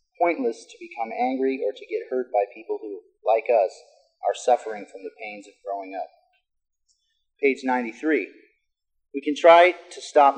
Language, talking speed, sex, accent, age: English, 160 wpm, male, American, 30-49